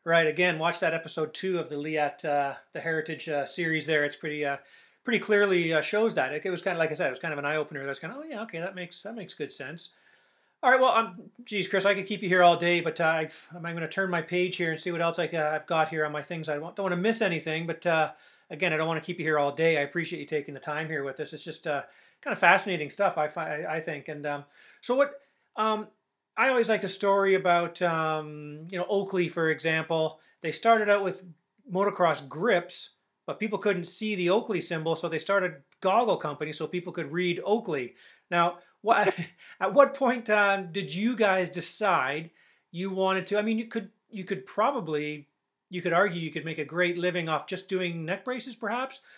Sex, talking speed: male, 240 wpm